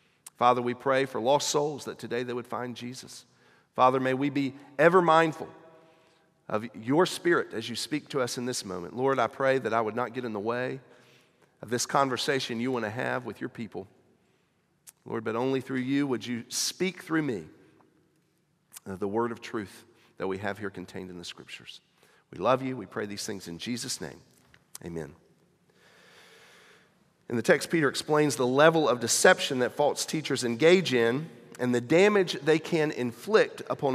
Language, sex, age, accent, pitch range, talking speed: English, male, 40-59, American, 125-180 Hz, 185 wpm